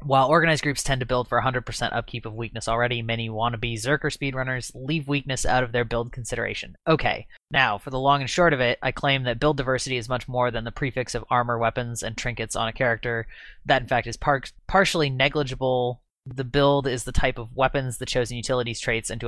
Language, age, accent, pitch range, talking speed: English, 20-39, American, 115-130 Hz, 220 wpm